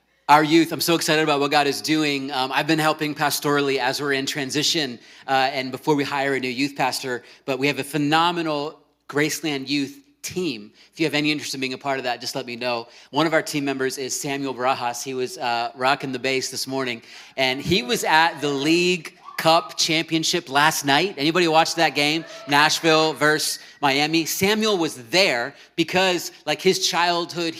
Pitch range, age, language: 135-160 Hz, 30-49, English